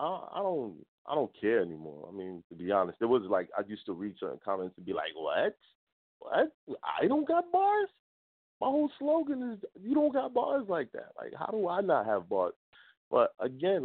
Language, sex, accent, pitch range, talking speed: English, male, American, 120-190 Hz, 210 wpm